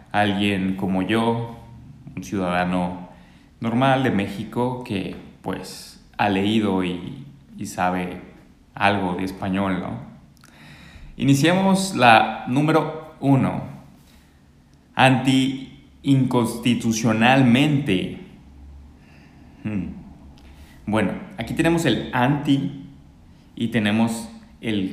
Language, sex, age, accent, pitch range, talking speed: English, male, 30-49, Mexican, 95-125 Hz, 80 wpm